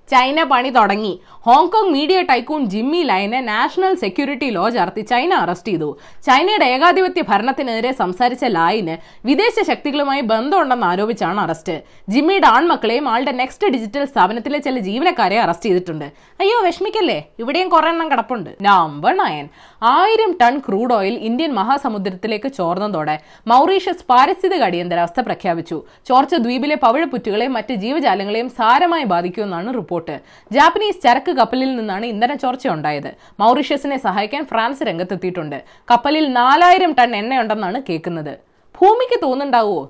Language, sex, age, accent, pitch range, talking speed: Malayalam, female, 20-39, native, 205-330 Hz, 120 wpm